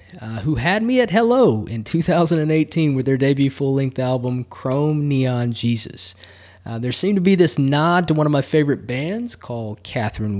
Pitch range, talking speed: 115-160 Hz, 180 wpm